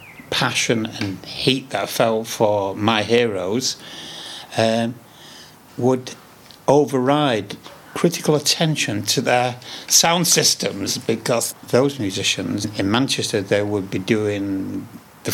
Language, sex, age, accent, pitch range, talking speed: English, male, 60-79, British, 105-125 Hz, 105 wpm